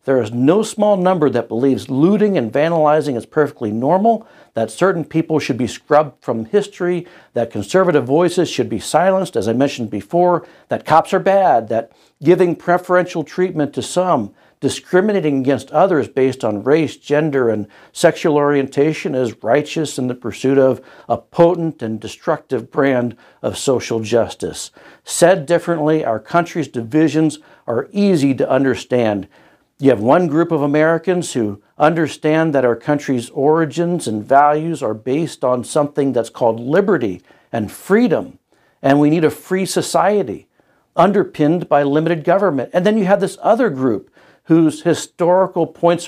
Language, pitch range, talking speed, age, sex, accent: English, 130-170 Hz, 150 wpm, 60-79, male, American